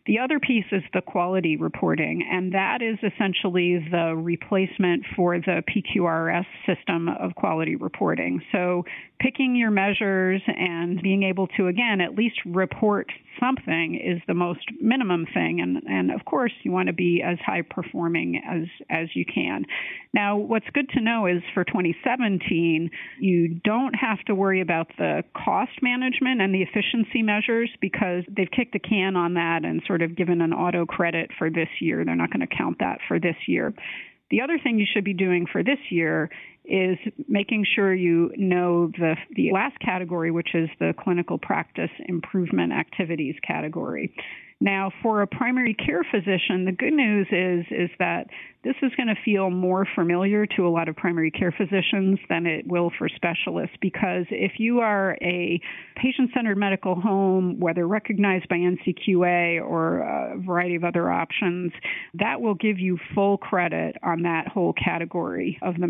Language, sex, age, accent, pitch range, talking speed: English, female, 40-59, American, 175-210 Hz, 170 wpm